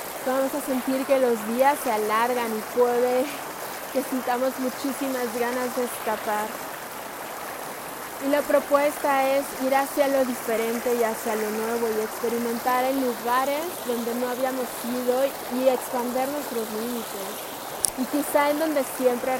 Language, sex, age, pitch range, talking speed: Spanish, female, 20-39, 230-265 Hz, 140 wpm